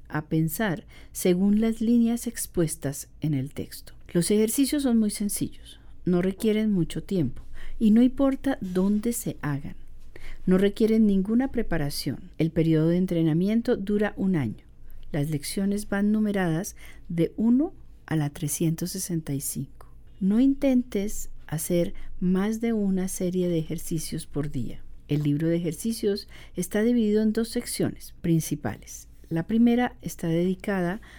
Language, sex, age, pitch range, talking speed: Spanish, female, 40-59, 160-215 Hz, 135 wpm